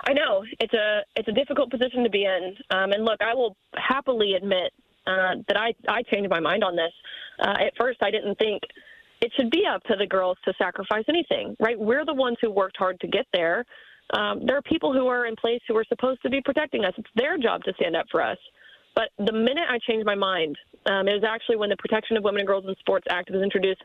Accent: American